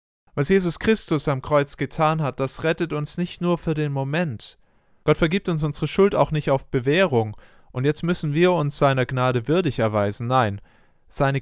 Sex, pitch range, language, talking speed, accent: male, 125-155 Hz, German, 185 wpm, German